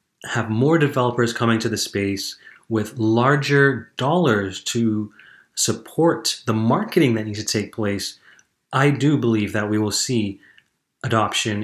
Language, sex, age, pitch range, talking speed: English, male, 30-49, 115-145 Hz, 140 wpm